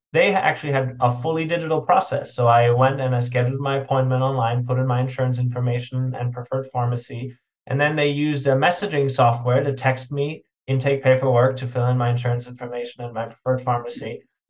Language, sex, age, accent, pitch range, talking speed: English, male, 20-39, American, 125-160 Hz, 190 wpm